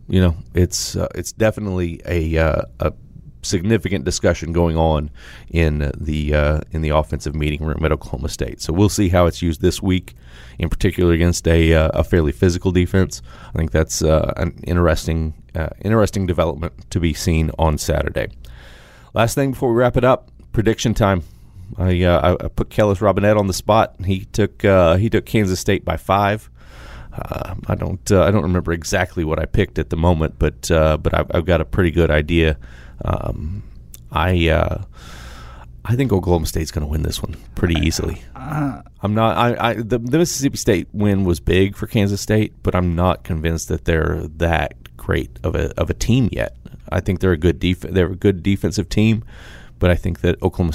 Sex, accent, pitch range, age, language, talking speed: male, American, 80-100 Hz, 30-49, English, 195 wpm